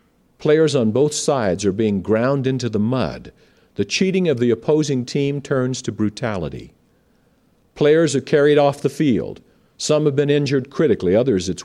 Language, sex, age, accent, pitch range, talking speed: English, male, 50-69, American, 120-175 Hz, 165 wpm